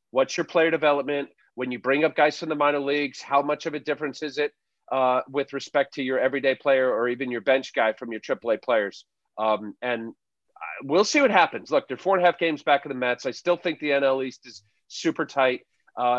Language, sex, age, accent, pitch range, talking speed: English, male, 40-59, American, 130-155 Hz, 235 wpm